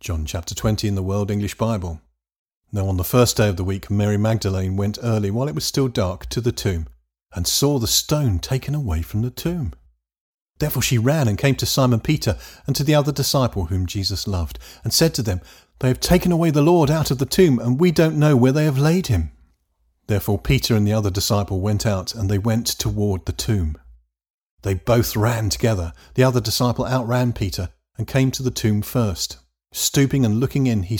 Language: English